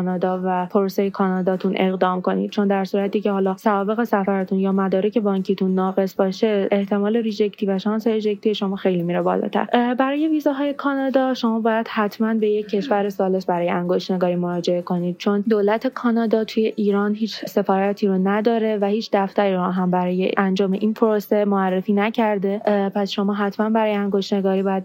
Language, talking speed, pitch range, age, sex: Persian, 160 wpm, 195-215 Hz, 20-39, female